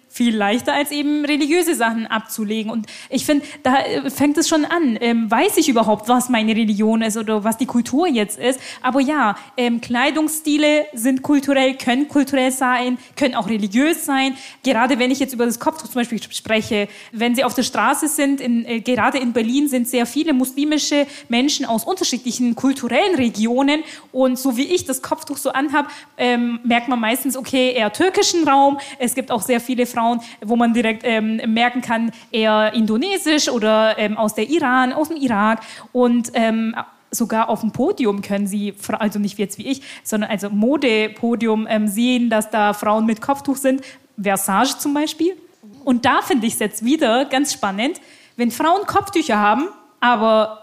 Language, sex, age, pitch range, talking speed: German, female, 20-39, 225-290 Hz, 180 wpm